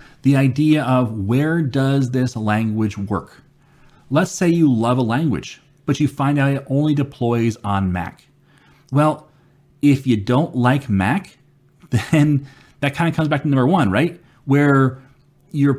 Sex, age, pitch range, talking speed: male, 30-49, 120-150 Hz, 155 wpm